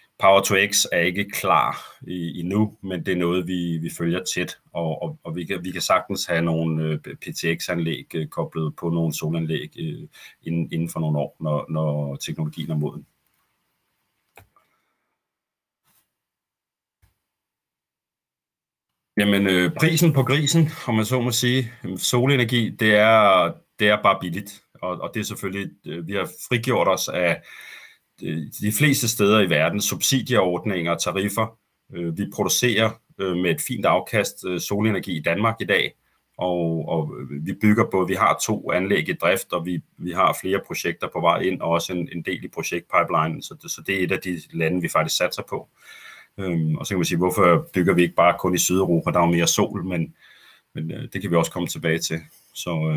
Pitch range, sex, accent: 80-110 Hz, male, native